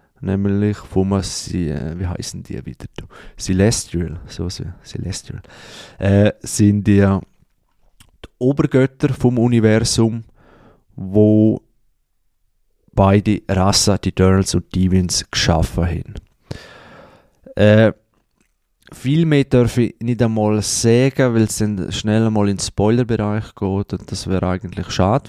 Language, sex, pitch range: German, male, 90-110 Hz